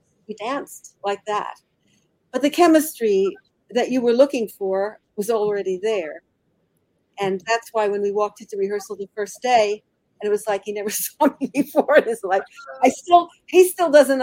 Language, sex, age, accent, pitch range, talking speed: English, female, 50-69, American, 210-275 Hz, 180 wpm